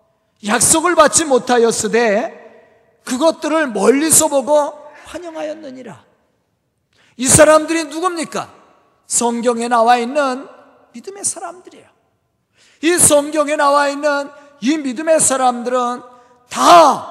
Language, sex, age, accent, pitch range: Korean, male, 40-59, native, 200-310 Hz